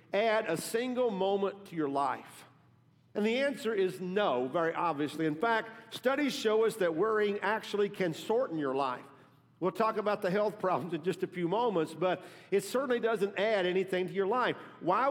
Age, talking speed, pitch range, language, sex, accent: 50-69, 185 wpm, 165-220 Hz, English, male, American